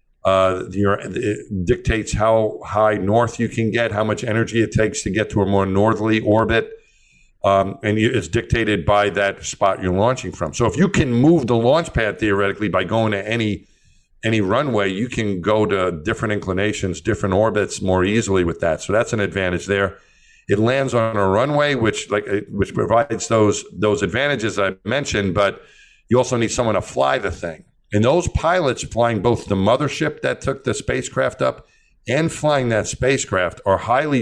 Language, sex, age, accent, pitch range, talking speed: English, male, 50-69, American, 100-115 Hz, 185 wpm